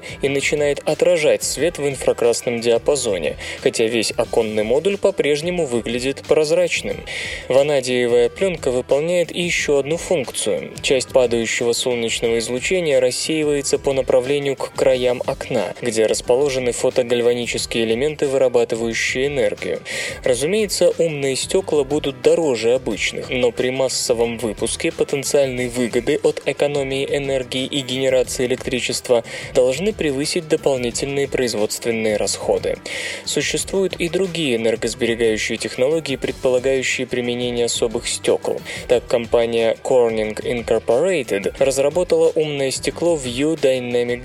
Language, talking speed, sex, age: Russian, 105 wpm, male, 20-39